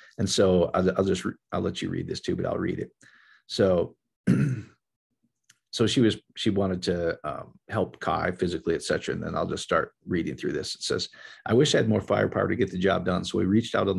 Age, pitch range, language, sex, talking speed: 40-59, 95-110 Hz, English, male, 225 wpm